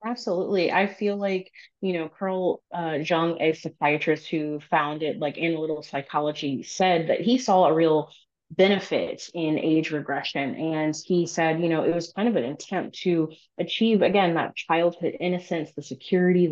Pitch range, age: 150-175 Hz, 30-49